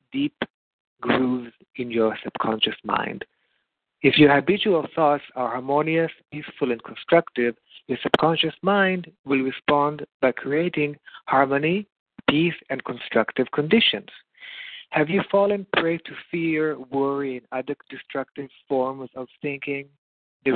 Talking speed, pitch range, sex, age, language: 120 wpm, 125-155 Hz, male, 50-69, English